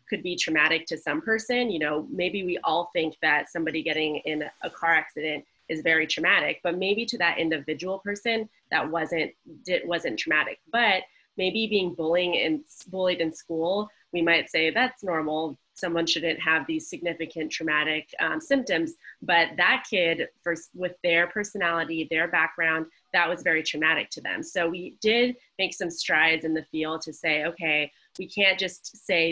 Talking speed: 175 wpm